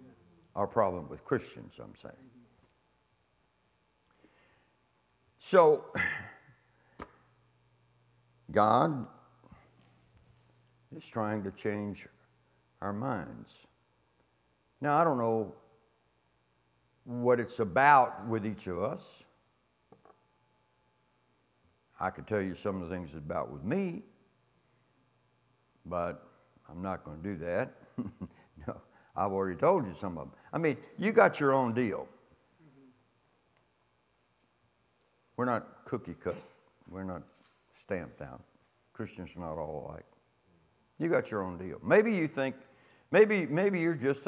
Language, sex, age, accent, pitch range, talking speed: English, male, 60-79, American, 85-125 Hz, 110 wpm